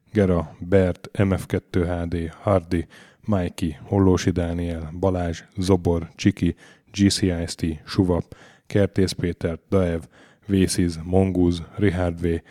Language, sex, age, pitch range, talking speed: Hungarian, male, 10-29, 85-100 Hz, 85 wpm